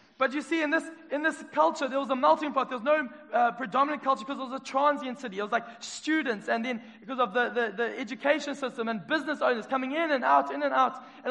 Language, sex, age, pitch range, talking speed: English, male, 20-39, 225-270 Hz, 260 wpm